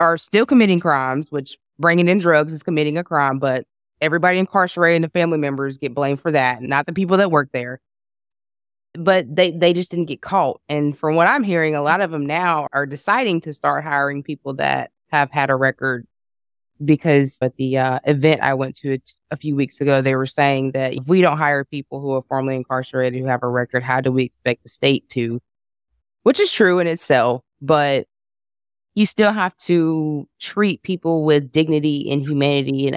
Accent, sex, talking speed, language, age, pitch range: American, female, 200 wpm, English, 20-39, 135-170 Hz